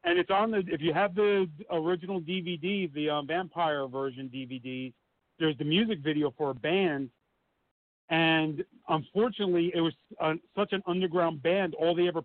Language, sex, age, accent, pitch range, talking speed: English, male, 50-69, American, 150-180 Hz, 165 wpm